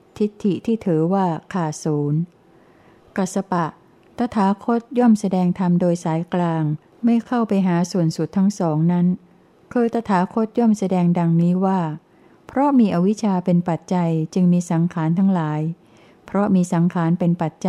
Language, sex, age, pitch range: Thai, female, 60-79, 165-195 Hz